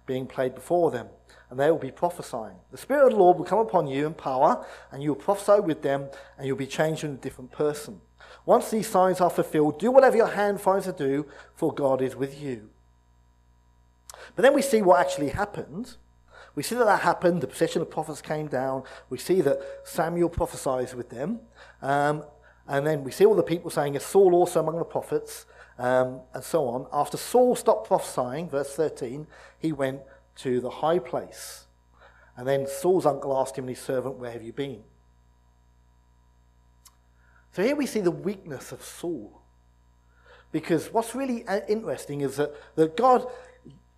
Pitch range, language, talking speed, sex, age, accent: 125-180 Hz, English, 190 wpm, male, 40-59, British